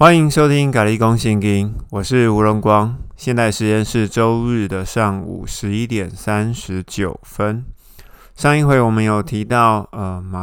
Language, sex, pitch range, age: Chinese, male, 100-120 Hz, 20-39